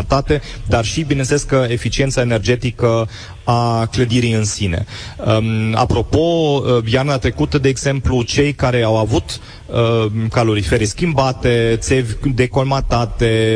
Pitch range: 110-135 Hz